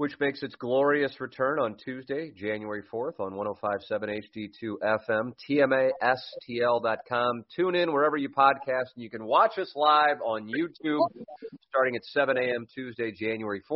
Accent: American